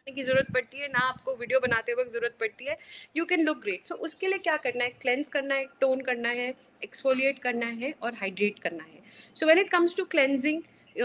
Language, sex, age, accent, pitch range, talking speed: Hindi, female, 30-49, native, 235-290 Hz, 225 wpm